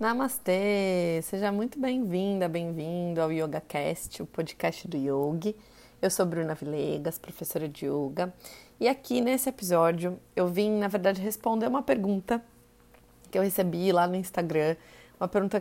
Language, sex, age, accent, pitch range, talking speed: Portuguese, female, 20-39, Brazilian, 170-225 Hz, 140 wpm